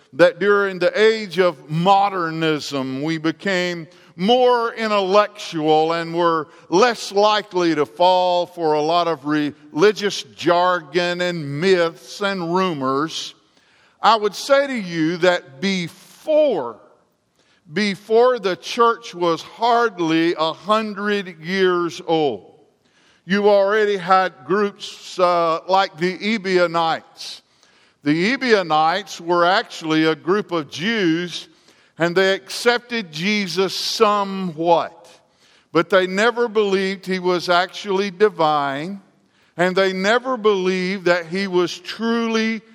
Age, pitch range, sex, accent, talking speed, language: 50-69, 170-210 Hz, male, American, 110 wpm, English